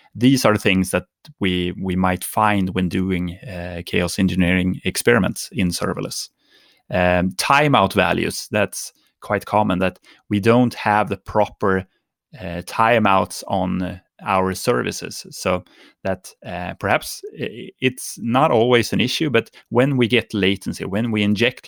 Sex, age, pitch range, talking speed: male, 30-49, 95-115 Hz, 140 wpm